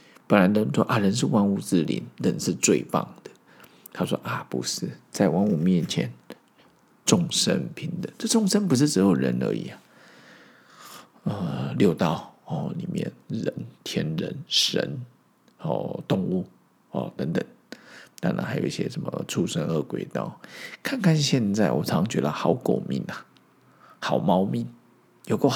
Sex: male